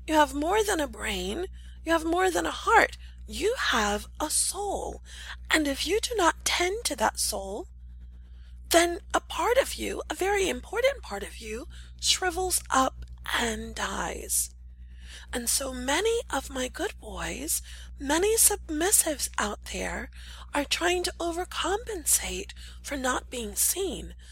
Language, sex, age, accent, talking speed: English, female, 30-49, American, 145 wpm